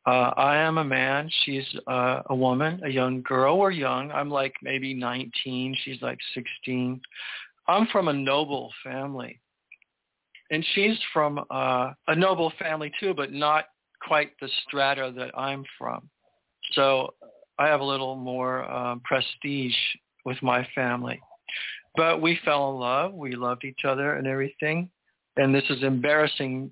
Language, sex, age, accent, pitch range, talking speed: English, male, 50-69, American, 130-150 Hz, 155 wpm